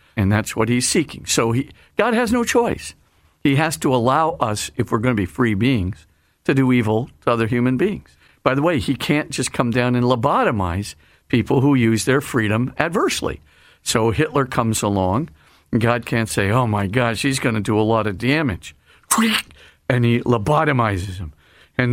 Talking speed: 190 wpm